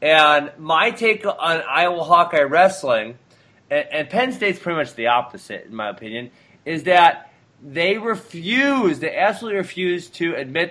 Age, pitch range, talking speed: 30-49, 145-195 Hz, 145 wpm